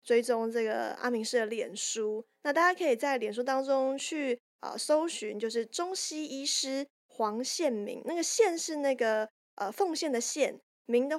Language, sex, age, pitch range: Chinese, female, 20-39, 230-300 Hz